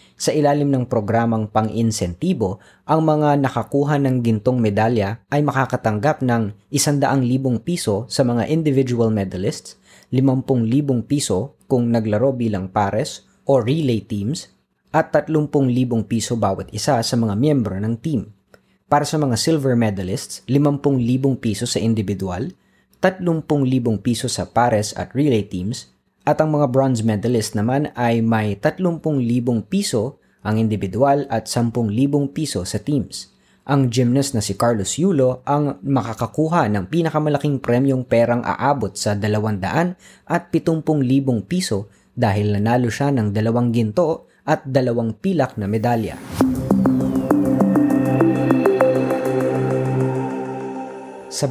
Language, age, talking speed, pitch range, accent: Filipino, 20-39, 125 wpm, 105-140 Hz, native